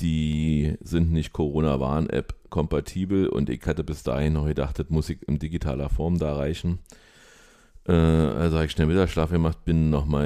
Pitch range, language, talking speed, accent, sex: 70-85 Hz, German, 165 wpm, German, male